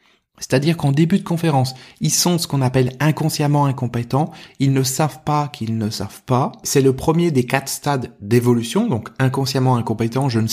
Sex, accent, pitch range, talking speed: male, French, 130-170 Hz, 180 wpm